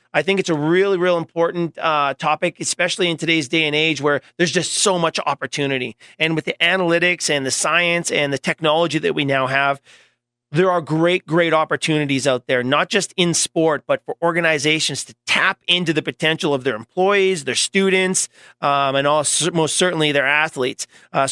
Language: English